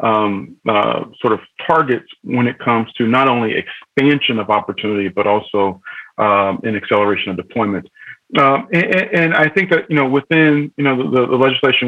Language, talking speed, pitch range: English, 175 wpm, 105-125 Hz